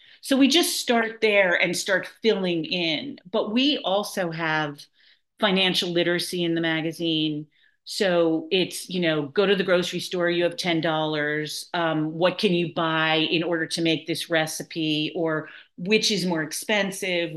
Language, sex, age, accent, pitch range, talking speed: English, female, 40-59, American, 165-210 Hz, 160 wpm